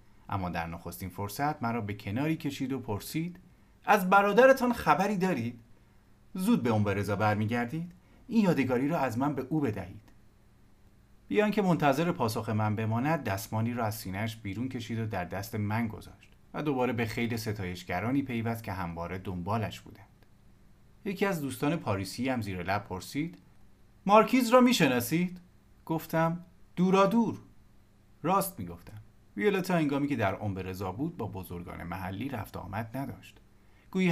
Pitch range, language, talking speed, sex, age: 100-160 Hz, Persian, 150 wpm, male, 40-59